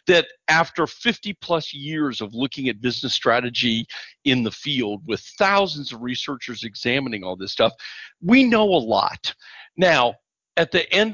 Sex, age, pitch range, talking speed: male, 50-69, 130-200 Hz, 155 wpm